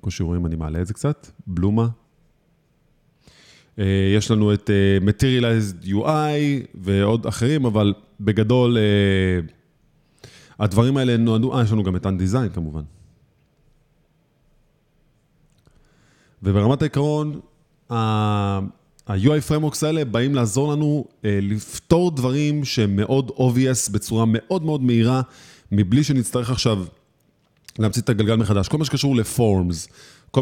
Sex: male